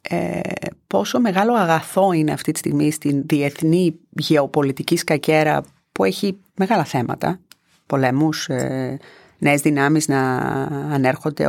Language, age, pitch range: Greek, 30-49, 145-190 Hz